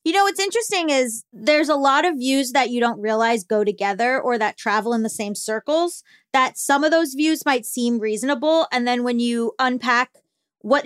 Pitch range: 245-340 Hz